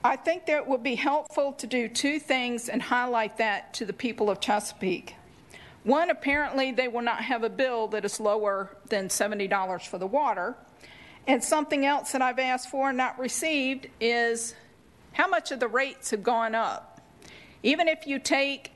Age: 50-69